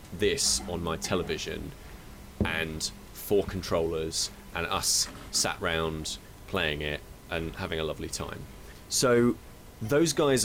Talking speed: 120 wpm